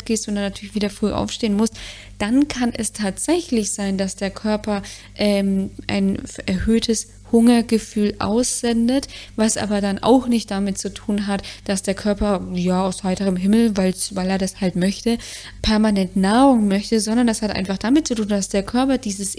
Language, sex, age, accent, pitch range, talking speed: German, female, 20-39, German, 200-230 Hz, 175 wpm